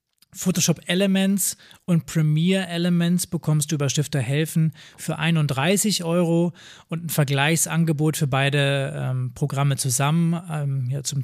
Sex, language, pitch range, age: male, German, 140-165 Hz, 20-39